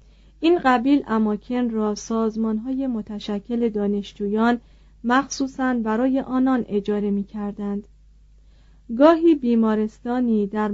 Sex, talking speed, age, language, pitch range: female, 90 wpm, 40-59, Persian, 210-250 Hz